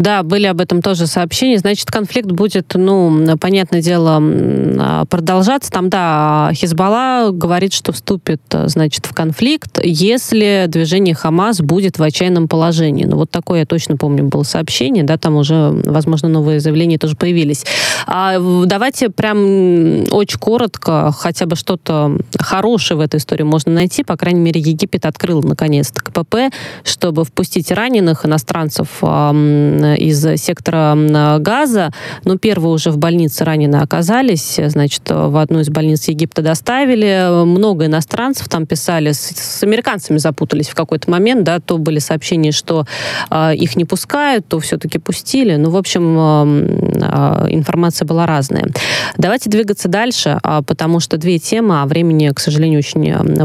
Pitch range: 155-190 Hz